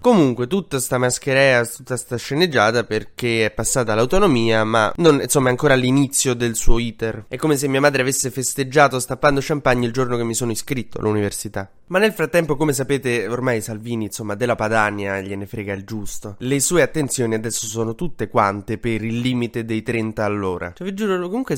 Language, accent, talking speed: Italian, native, 185 wpm